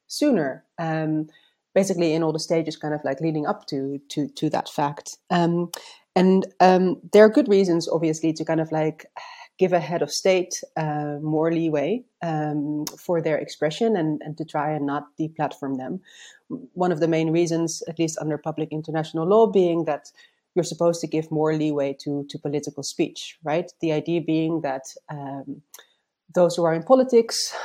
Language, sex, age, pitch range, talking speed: English, female, 30-49, 150-185 Hz, 180 wpm